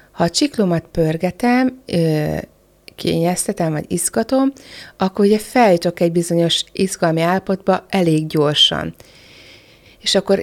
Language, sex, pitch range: Hungarian, female, 160-195 Hz